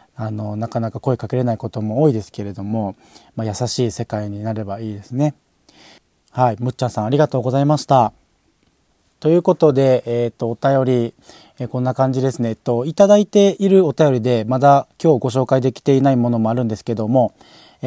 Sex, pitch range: male, 115-135 Hz